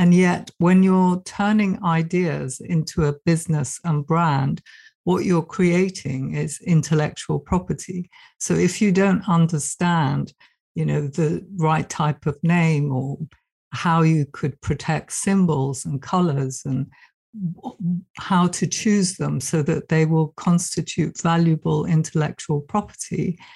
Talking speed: 125 wpm